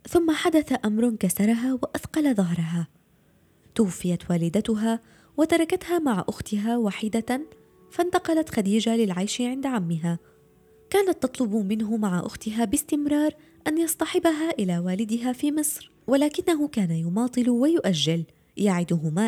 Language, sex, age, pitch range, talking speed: Arabic, female, 20-39, 185-290 Hz, 105 wpm